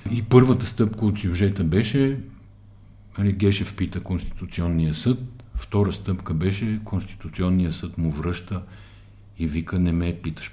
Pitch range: 80-105 Hz